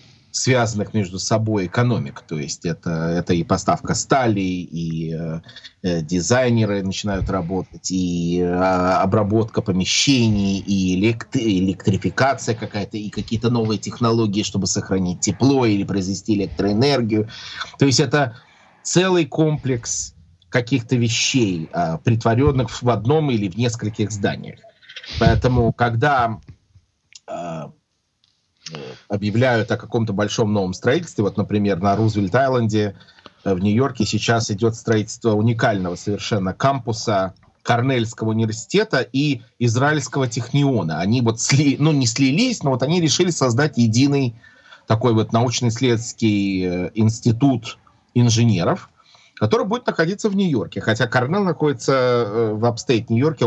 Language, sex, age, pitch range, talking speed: English, male, 30-49, 100-130 Hz, 115 wpm